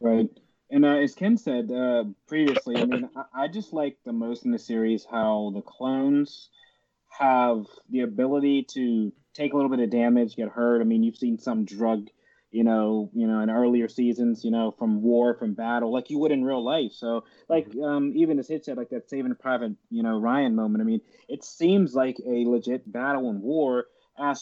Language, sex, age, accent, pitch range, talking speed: English, male, 20-39, American, 115-150 Hz, 210 wpm